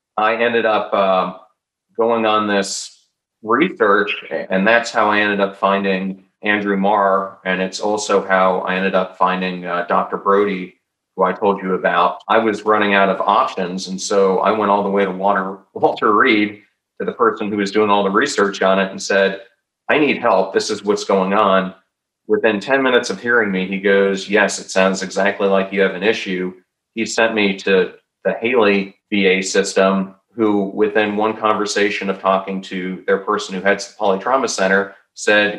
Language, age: English, 40-59